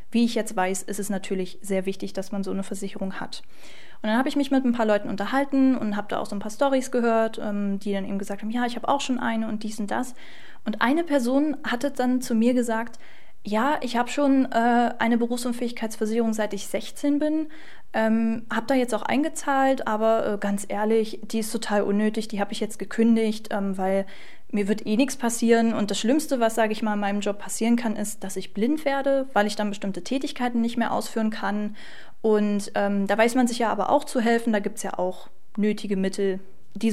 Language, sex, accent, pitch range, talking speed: German, female, German, 205-245 Hz, 225 wpm